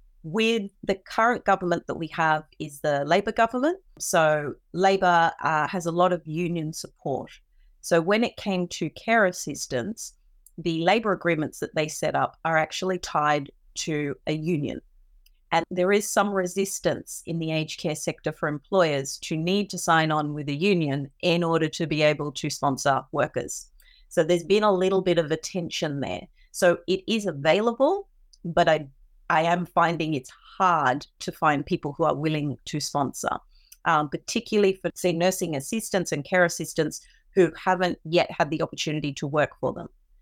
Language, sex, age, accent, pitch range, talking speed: English, female, 30-49, Australian, 155-190 Hz, 175 wpm